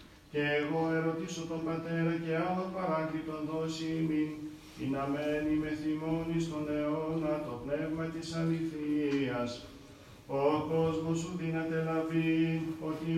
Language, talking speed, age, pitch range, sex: Greek, 125 wpm, 40-59, 150-160 Hz, male